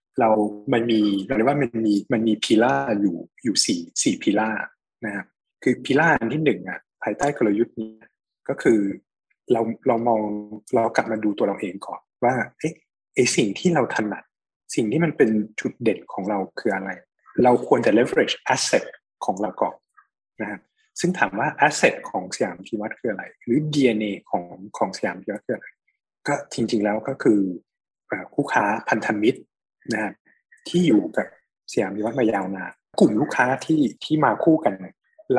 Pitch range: 105-155 Hz